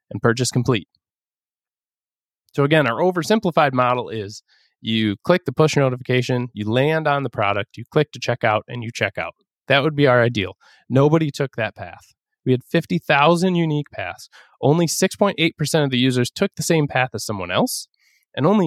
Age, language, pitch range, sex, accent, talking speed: 20-39, English, 110-150 Hz, male, American, 180 wpm